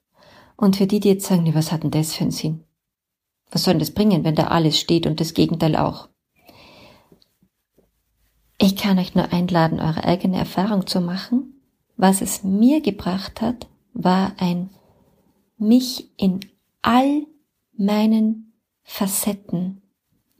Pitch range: 185-225 Hz